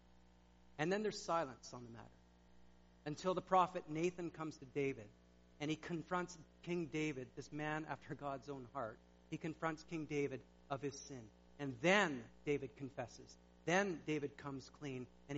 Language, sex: English, male